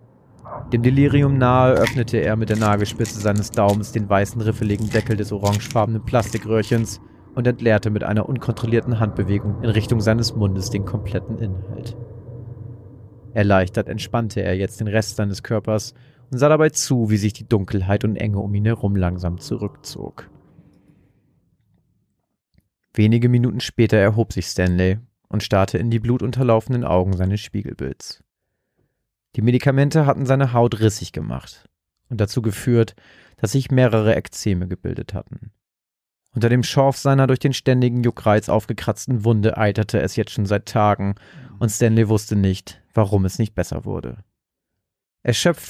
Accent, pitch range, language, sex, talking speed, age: German, 105-120 Hz, German, male, 145 wpm, 30-49